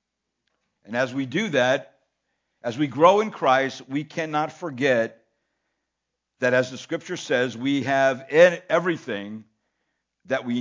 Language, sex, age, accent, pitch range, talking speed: English, male, 60-79, American, 120-155 Hz, 130 wpm